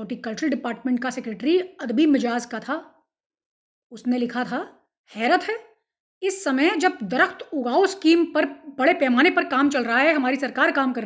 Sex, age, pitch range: female, 30-49, 270-370 Hz